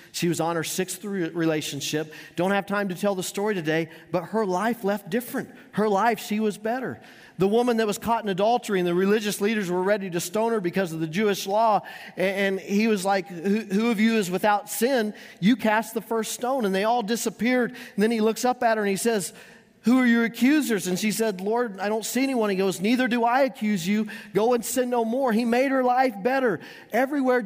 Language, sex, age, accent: English, male, 40-59, American